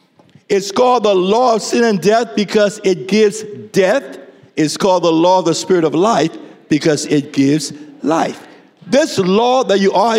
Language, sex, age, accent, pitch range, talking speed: English, male, 60-79, American, 200-265 Hz, 175 wpm